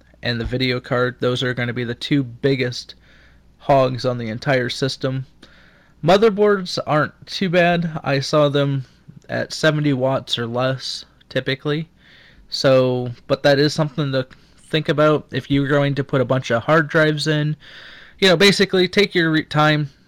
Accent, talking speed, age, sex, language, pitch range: American, 165 wpm, 20-39, male, English, 125-150 Hz